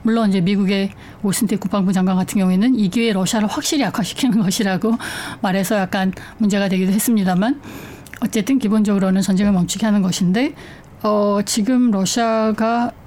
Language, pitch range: Korean, 195-235 Hz